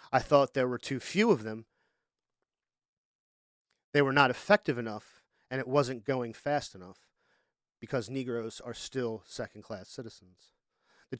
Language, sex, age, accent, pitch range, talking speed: English, male, 40-59, American, 120-145 Hz, 140 wpm